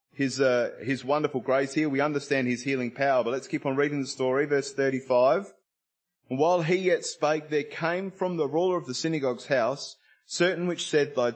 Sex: male